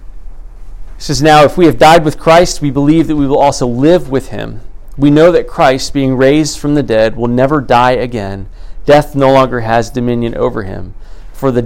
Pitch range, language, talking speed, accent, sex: 105-135 Hz, English, 205 wpm, American, male